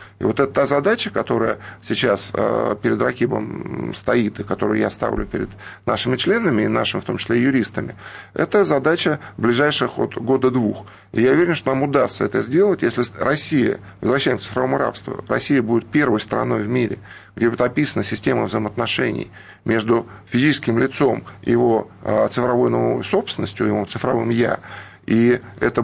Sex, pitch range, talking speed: male, 105-145 Hz, 150 wpm